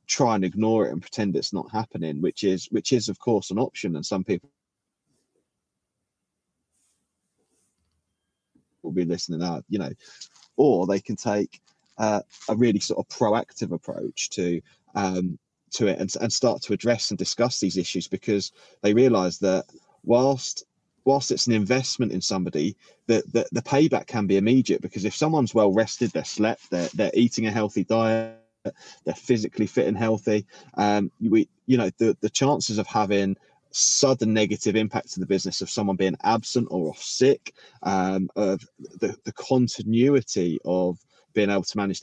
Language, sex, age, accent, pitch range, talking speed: English, male, 30-49, British, 95-120 Hz, 170 wpm